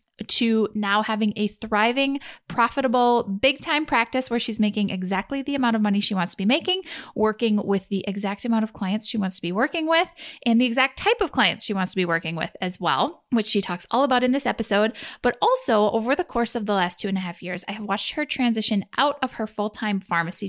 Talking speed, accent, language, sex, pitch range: 230 wpm, American, English, female, 200-275 Hz